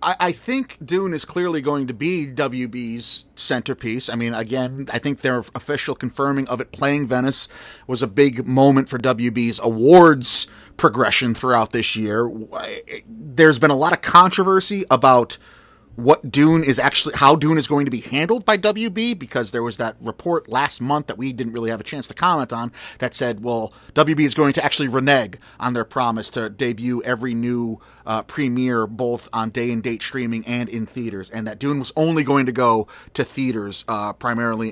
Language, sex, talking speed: English, male, 190 wpm